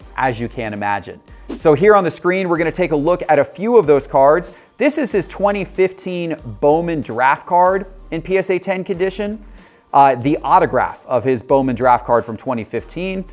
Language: English